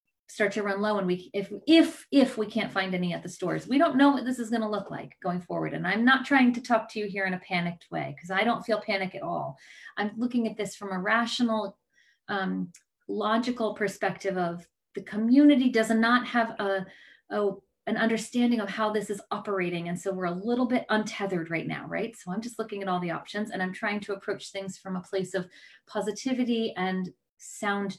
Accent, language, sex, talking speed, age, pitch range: American, English, female, 220 wpm, 30-49, 190-240 Hz